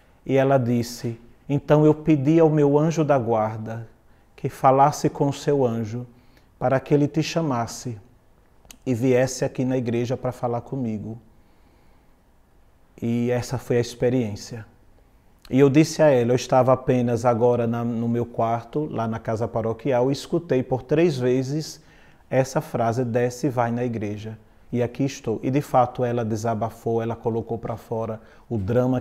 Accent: Brazilian